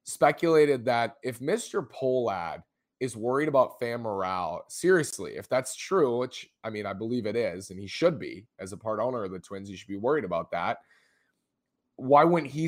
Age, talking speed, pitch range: 20-39, 195 wpm, 105-130 Hz